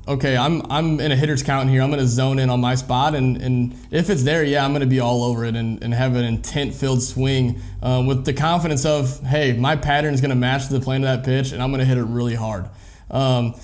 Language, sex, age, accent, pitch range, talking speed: English, male, 20-39, American, 130-155 Hz, 270 wpm